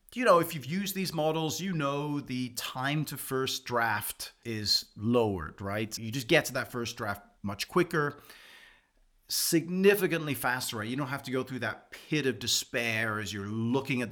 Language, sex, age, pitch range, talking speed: English, male, 30-49, 105-145 Hz, 180 wpm